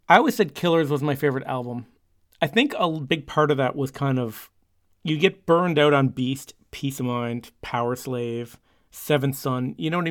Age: 30-49